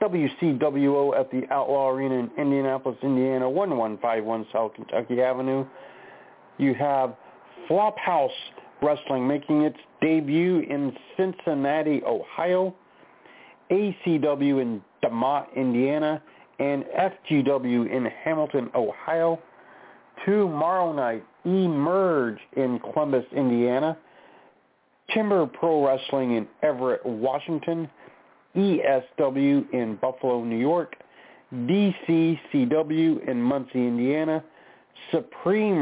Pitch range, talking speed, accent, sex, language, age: 125-155 Hz, 90 wpm, American, male, English, 50-69